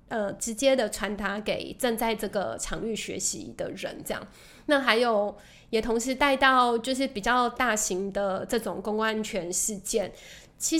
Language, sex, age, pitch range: Chinese, female, 20-39, 210-265 Hz